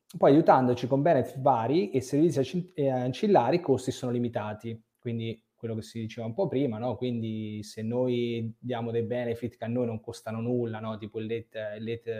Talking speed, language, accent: 180 wpm, Italian, native